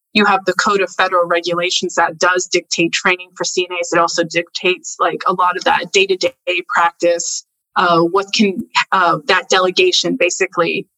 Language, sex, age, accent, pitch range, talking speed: English, female, 20-39, American, 180-195 Hz, 175 wpm